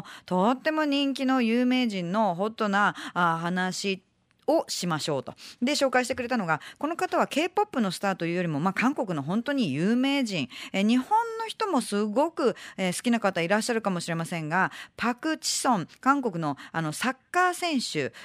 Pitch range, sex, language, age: 165-255 Hz, female, Japanese, 40-59